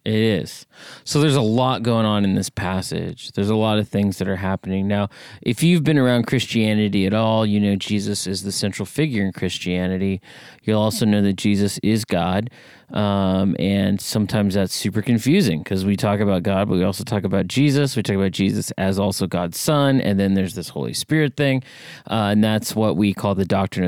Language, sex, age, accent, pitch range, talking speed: English, male, 30-49, American, 95-120 Hz, 210 wpm